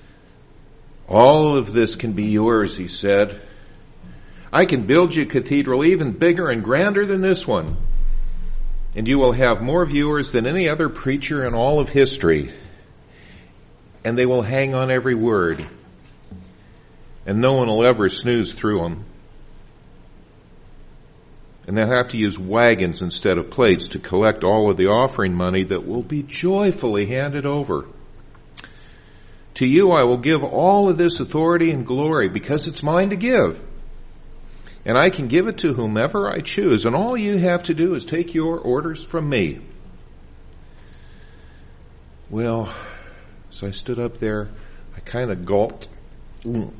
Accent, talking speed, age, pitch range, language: American, 155 wpm, 50-69, 100-145 Hz, English